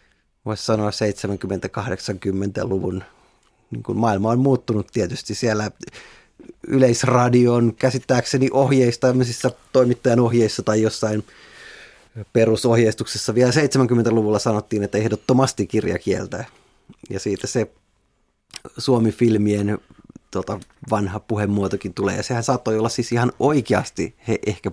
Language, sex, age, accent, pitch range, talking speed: Finnish, male, 20-39, native, 100-125 Hz, 105 wpm